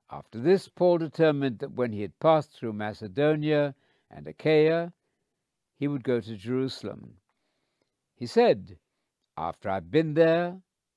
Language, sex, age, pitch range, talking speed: English, male, 60-79, 115-160 Hz, 130 wpm